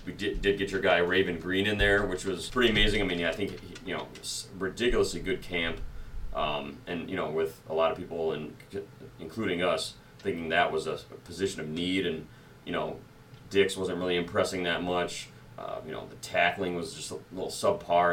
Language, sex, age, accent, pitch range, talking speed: English, male, 30-49, American, 80-95 Hz, 210 wpm